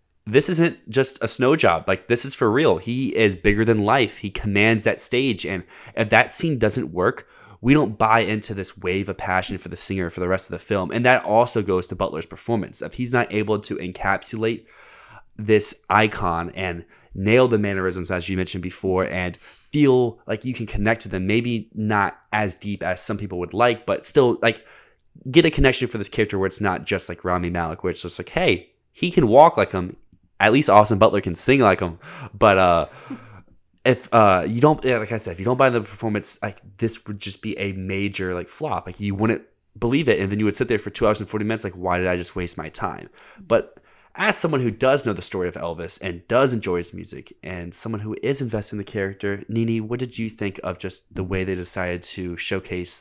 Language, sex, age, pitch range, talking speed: English, male, 20-39, 90-115 Hz, 230 wpm